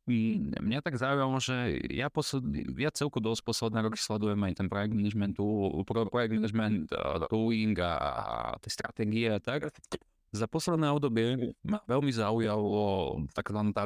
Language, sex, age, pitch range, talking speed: Slovak, male, 30-49, 105-125 Hz, 140 wpm